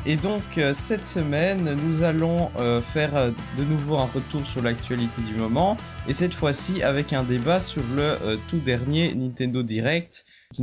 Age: 20-39